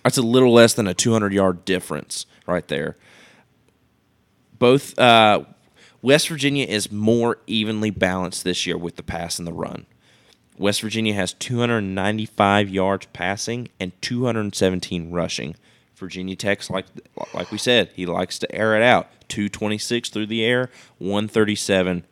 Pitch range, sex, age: 95-135 Hz, male, 20-39